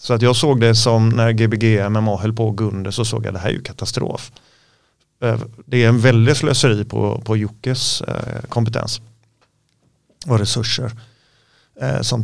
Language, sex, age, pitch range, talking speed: English, male, 30-49, 110-120 Hz, 160 wpm